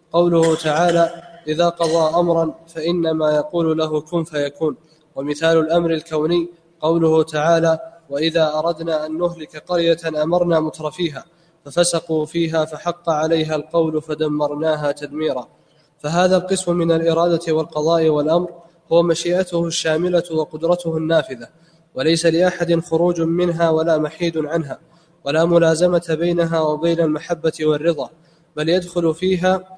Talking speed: 115 wpm